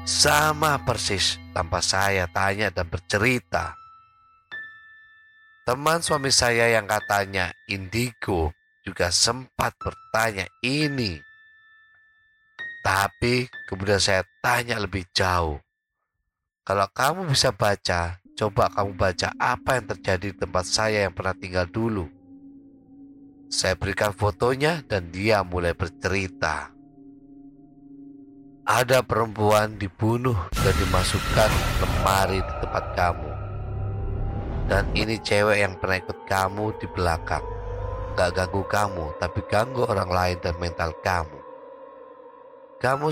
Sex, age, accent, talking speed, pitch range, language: male, 30-49, native, 105 wpm, 95-140 Hz, Indonesian